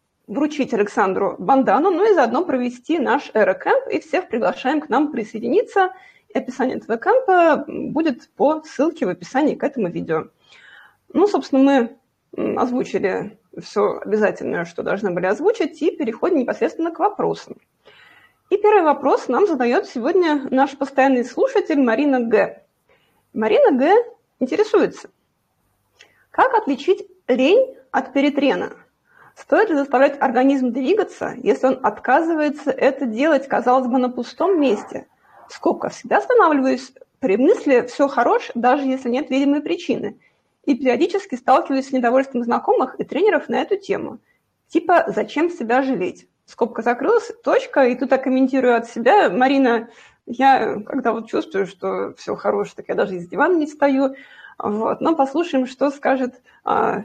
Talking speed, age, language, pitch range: 140 wpm, 20-39, Russian, 250-345 Hz